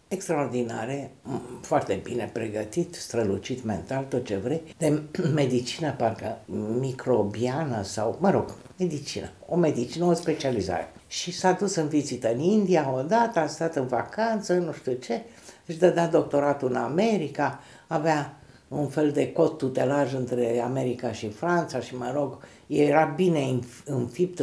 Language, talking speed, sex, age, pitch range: Romanian, 140 wpm, female, 60-79, 125-170 Hz